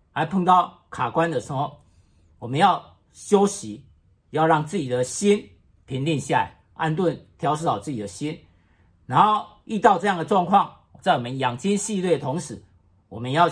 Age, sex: 50-69, male